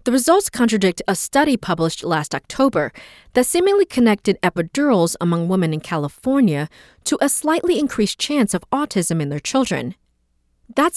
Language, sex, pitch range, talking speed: English, female, 165-270 Hz, 150 wpm